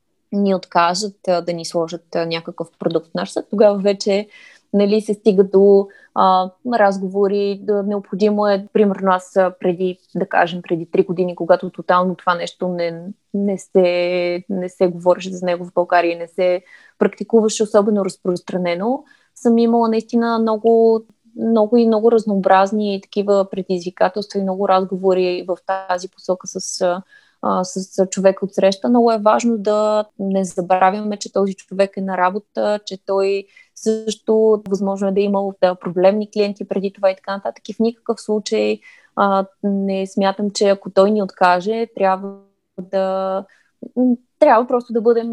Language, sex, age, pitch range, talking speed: Bulgarian, female, 20-39, 185-210 Hz, 150 wpm